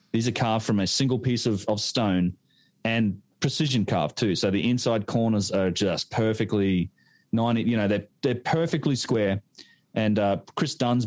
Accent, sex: Australian, male